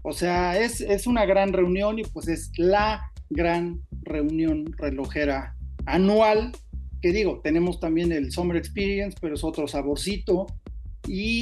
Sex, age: male, 40-59